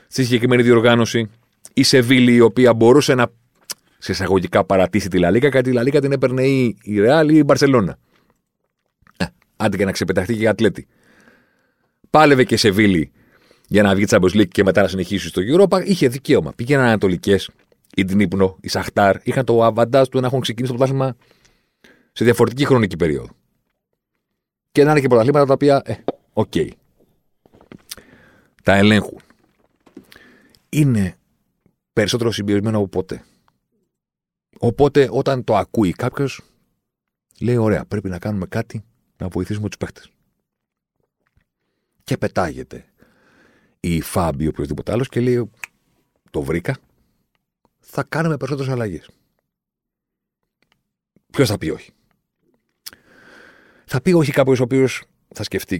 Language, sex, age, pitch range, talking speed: Greek, male, 40-59, 100-135 Hz, 135 wpm